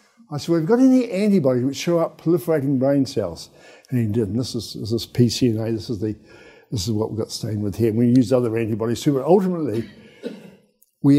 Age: 60-79